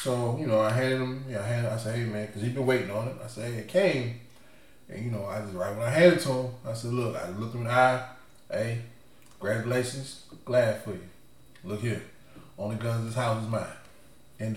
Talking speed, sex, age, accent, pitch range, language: 240 wpm, male, 20-39, American, 110-140 Hz, English